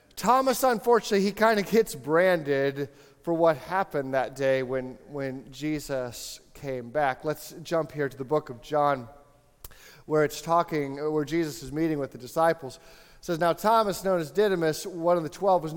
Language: English